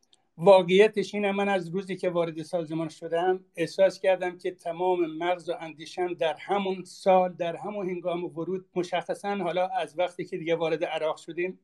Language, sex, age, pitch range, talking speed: Persian, male, 60-79, 175-195 Hz, 175 wpm